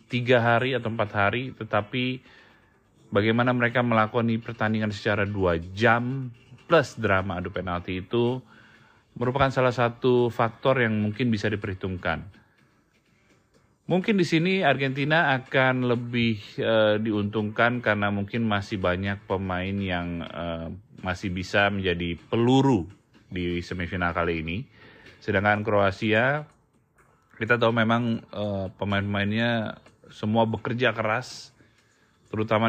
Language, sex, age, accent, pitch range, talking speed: Indonesian, male, 30-49, native, 100-120 Hz, 110 wpm